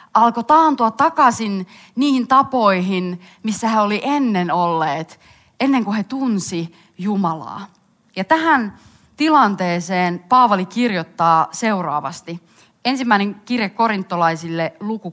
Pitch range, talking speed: 180-245 Hz, 100 wpm